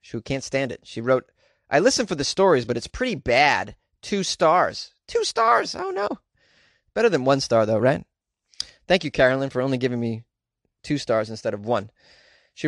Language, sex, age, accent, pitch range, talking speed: English, male, 30-49, American, 125-175 Hz, 190 wpm